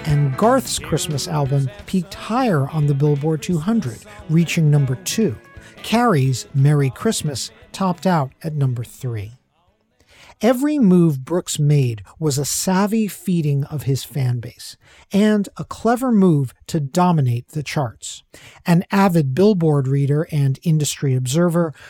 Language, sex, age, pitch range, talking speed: English, male, 50-69, 140-190 Hz, 130 wpm